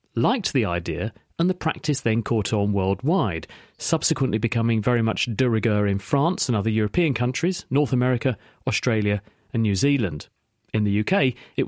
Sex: male